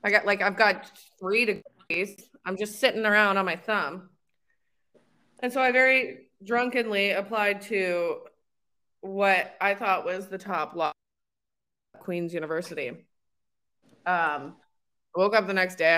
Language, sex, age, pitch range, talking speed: English, female, 20-39, 175-210 Hz, 145 wpm